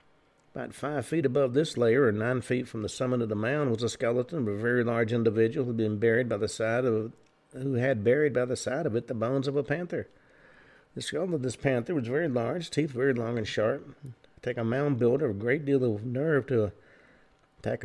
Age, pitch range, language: 50-69, 115-140 Hz, English